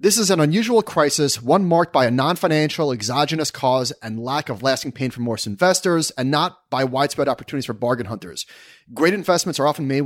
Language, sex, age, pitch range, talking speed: English, male, 30-49, 125-155 Hz, 195 wpm